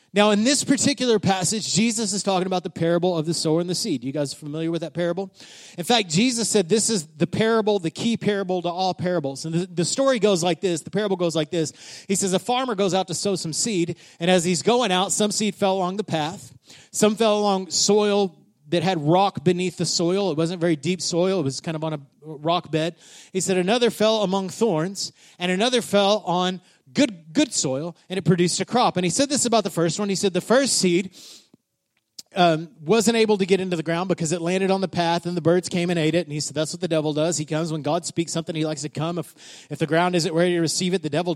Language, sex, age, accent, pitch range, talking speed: English, male, 30-49, American, 165-200 Hz, 250 wpm